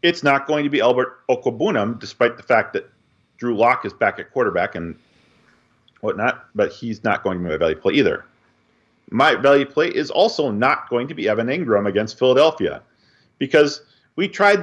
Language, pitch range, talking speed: English, 105-140 Hz, 185 wpm